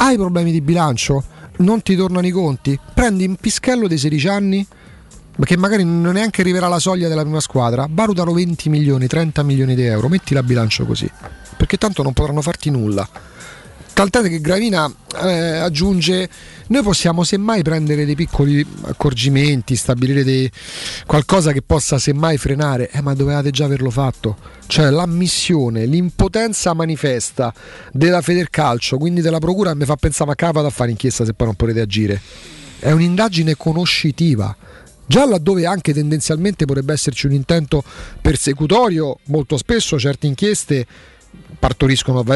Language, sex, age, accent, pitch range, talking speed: Italian, male, 40-59, native, 135-185 Hz, 150 wpm